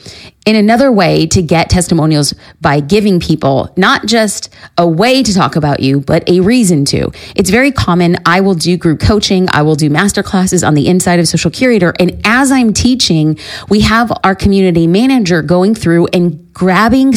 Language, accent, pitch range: English, American, 170-215 Hz